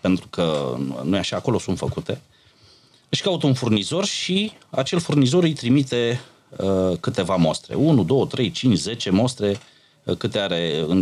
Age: 30-49